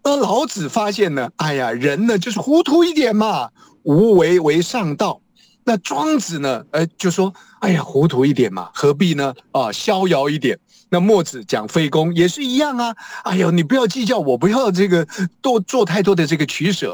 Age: 50-69